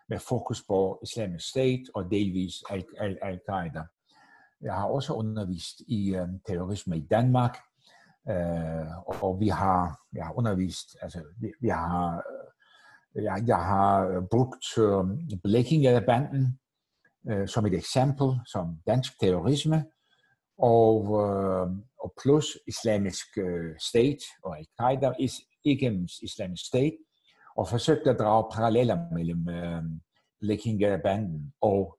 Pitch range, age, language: 90-125 Hz, 60-79, Danish